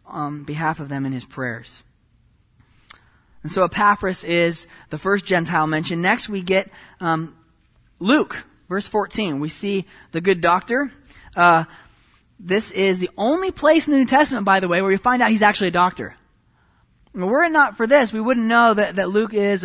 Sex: male